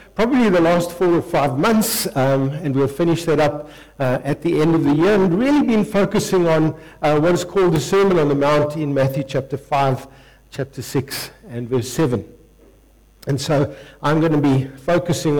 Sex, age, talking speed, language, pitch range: male, 60-79, 195 wpm, English, 145-185 Hz